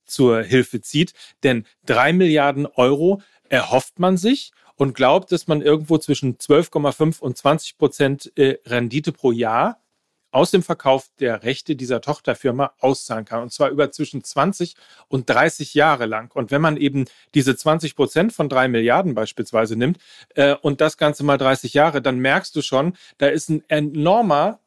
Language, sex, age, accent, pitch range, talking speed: German, male, 40-59, German, 135-175 Hz, 170 wpm